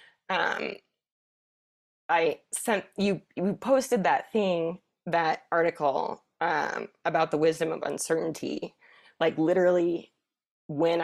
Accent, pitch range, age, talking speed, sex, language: American, 145-180 Hz, 20-39, 105 wpm, female, English